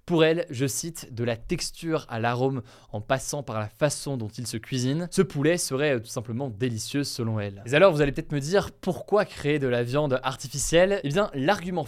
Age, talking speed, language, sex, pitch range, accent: 20-39, 210 wpm, French, male, 115-145 Hz, French